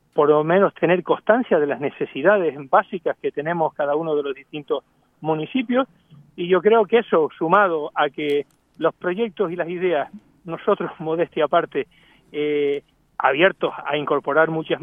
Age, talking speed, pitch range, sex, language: 40-59, 150 wpm, 150-205 Hz, male, Spanish